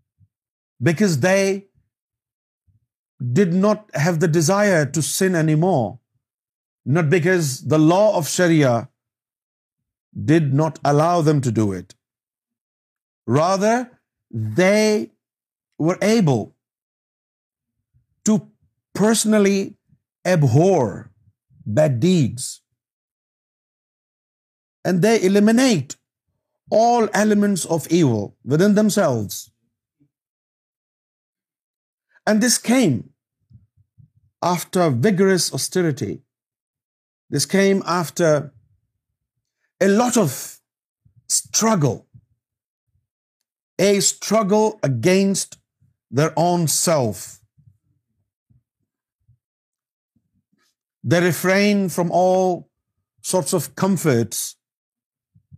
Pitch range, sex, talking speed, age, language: 115-185 Hz, male, 70 wpm, 50-69, Urdu